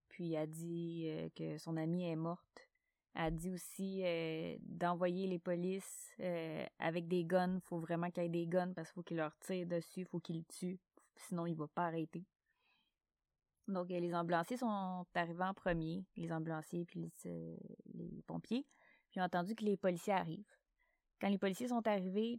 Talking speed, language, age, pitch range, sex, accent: 200 wpm, French, 20-39, 170-195 Hz, female, Canadian